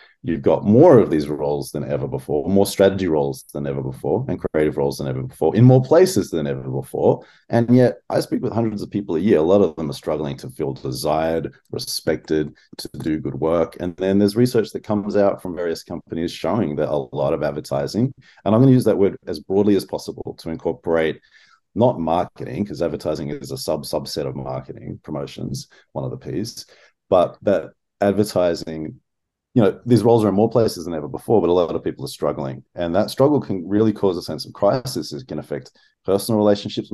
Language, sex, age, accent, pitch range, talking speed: English, male, 30-49, Australian, 75-110 Hz, 210 wpm